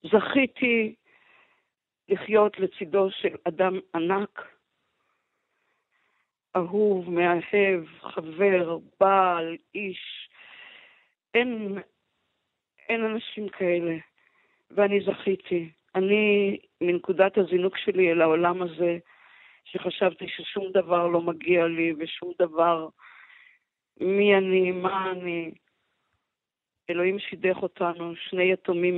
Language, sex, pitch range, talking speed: Hebrew, female, 170-200 Hz, 85 wpm